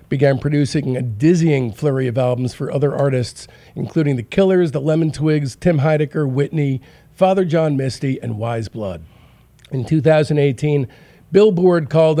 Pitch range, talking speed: 150-220 Hz, 145 wpm